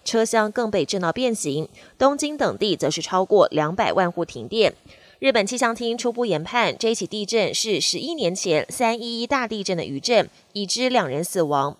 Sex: female